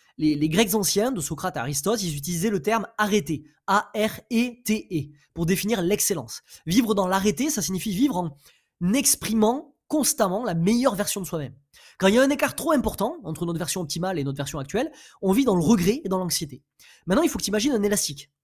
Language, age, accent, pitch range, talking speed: French, 20-39, French, 160-230 Hz, 205 wpm